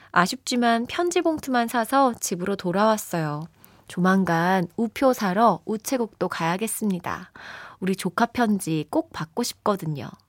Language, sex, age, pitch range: Korean, female, 20-39, 170-250 Hz